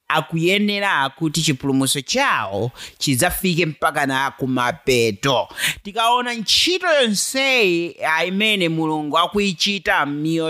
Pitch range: 145-220 Hz